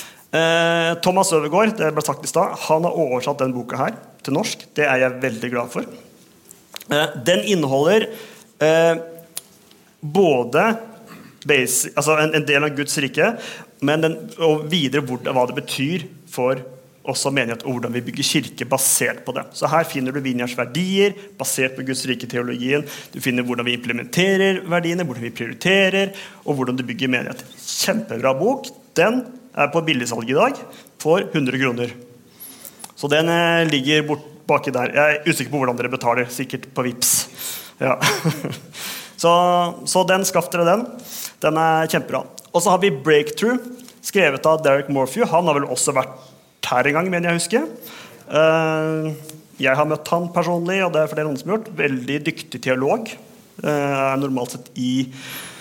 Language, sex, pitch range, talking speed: English, male, 130-175 Hz, 155 wpm